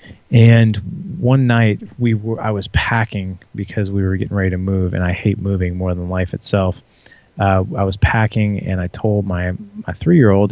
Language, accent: English, American